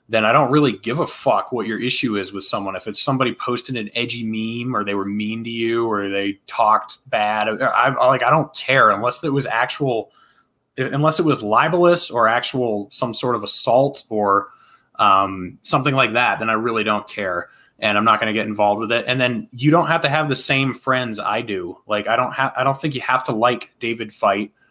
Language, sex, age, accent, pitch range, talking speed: English, male, 20-39, American, 105-130 Hz, 230 wpm